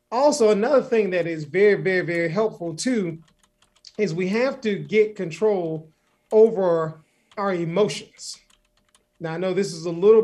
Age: 30-49